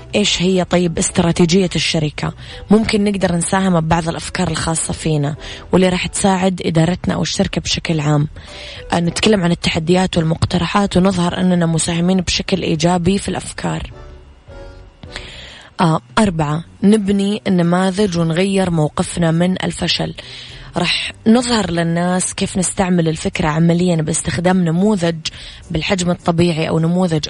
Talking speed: 110 wpm